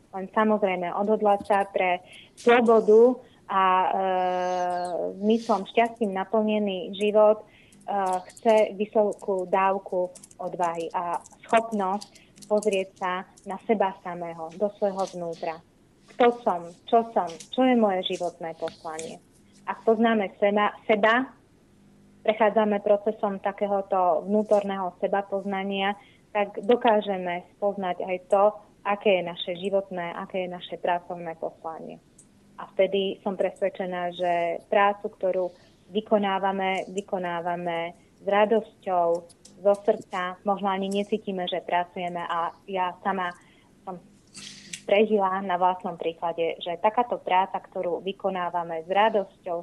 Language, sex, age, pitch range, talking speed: Slovak, female, 20-39, 180-210 Hz, 110 wpm